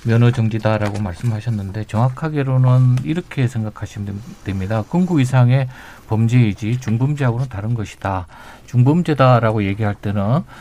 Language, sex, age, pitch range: Korean, male, 50-69, 105-135 Hz